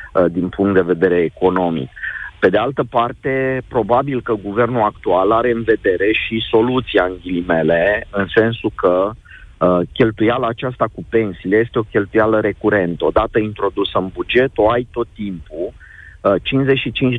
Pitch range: 95-120 Hz